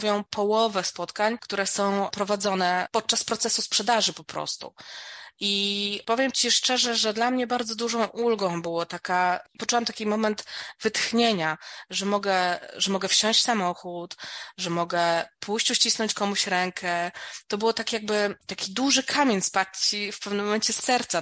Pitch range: 180-220 Hz